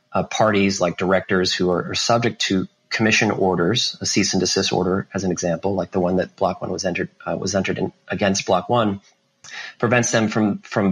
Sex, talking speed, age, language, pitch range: male, 210 wpm, 30-49, English, 95-110 Hz